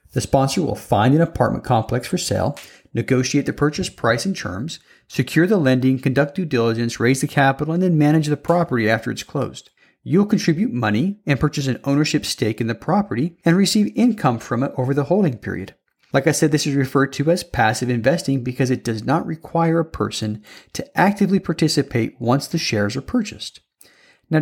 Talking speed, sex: 190 wpm, male